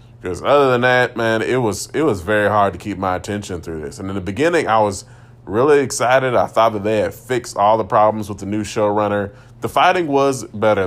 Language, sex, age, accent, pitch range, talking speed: English, male, 20-39, American, 90-120 Hz, 230 wpm